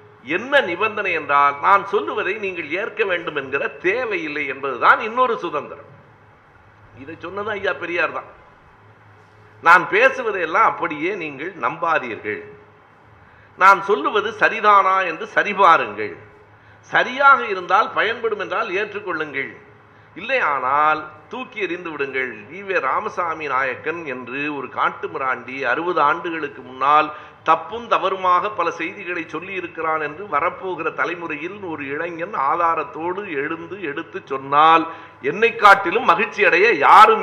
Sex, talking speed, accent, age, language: male, 90 wpm, native, 60-79, Tamil